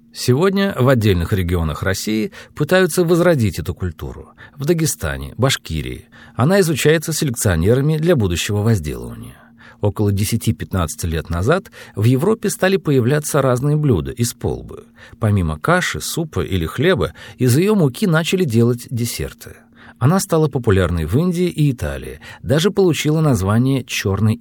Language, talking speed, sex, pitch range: Russian, 130 wpm, male, 90-150 Hz